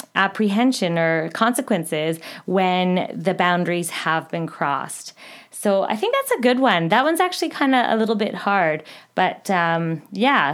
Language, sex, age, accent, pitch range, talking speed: English, female, 20-39, American, 175-220 Hz, 160 wpm